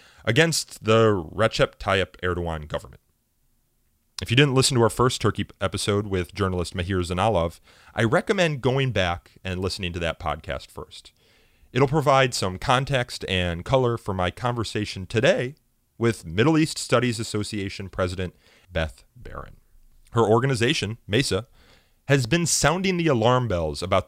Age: 30-49